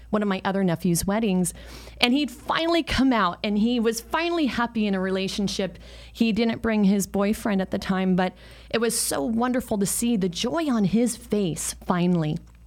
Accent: American